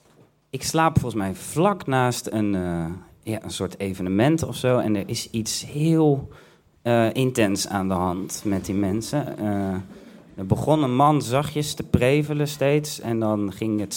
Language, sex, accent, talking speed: Dutch, male, Dutch, 170 wpm